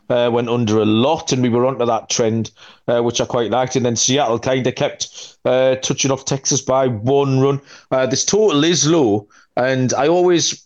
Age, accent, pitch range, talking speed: 30-49, British, 120-145 Hz, 205 wpm